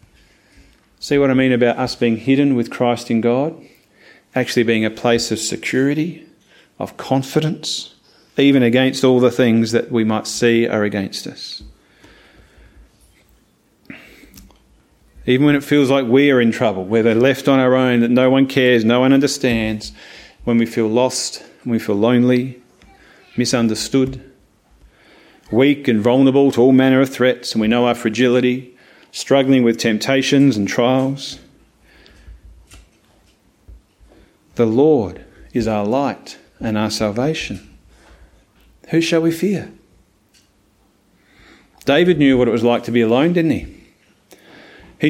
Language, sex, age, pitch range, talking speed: English, male, 40-59, 115-140 Hz, 140 wpm